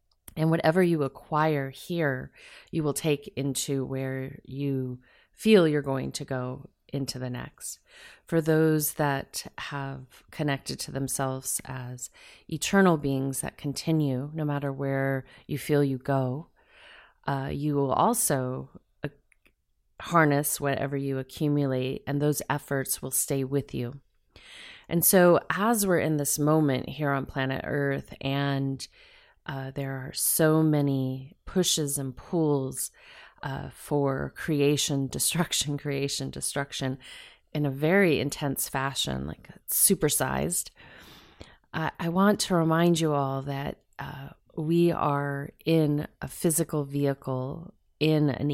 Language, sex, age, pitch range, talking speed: English, female, 30-49, 135-160 Hz, 130 wpm